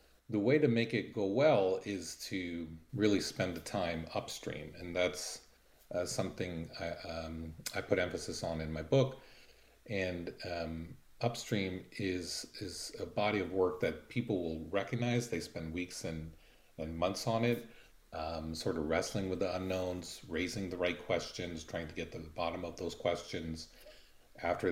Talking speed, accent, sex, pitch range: 165 wpm, American, male, 80-100 Hz